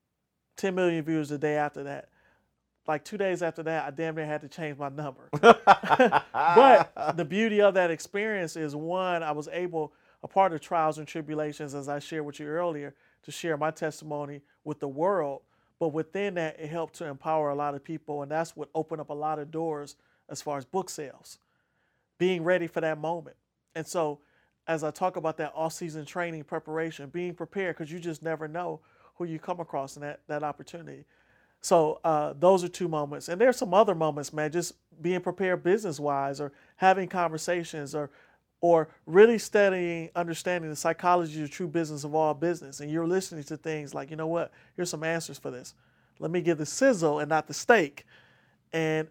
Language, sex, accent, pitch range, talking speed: English, male, American, 150-175 Hz, 200 wpm